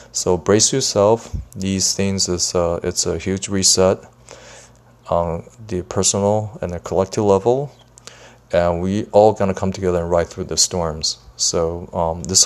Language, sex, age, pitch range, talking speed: English, male, 20-39, 85-95 Hz, 155 wpm